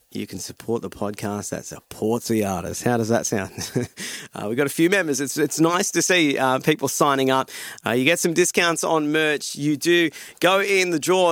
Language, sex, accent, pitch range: English, male, Australian, 130-175 Hz